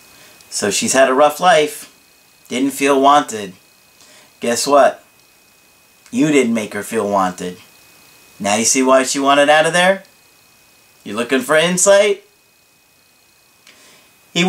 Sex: male